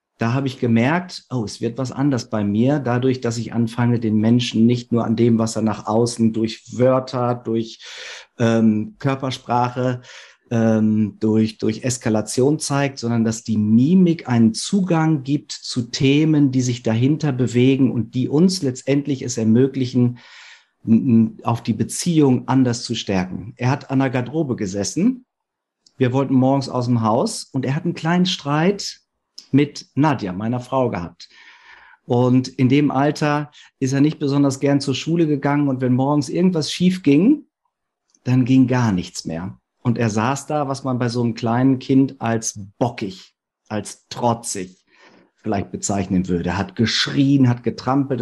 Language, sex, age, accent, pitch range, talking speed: German, male, 50-69, German, 115-140 Hz, 165 wpm